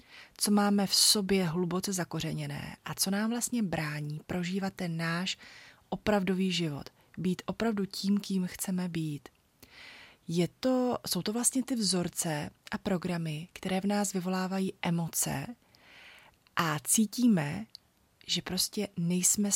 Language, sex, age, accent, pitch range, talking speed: Czech, female, 30-49, native, 165-200 Hz, 125 wpm